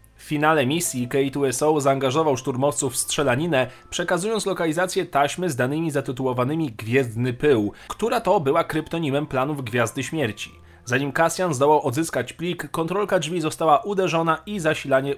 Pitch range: 125-170 Hz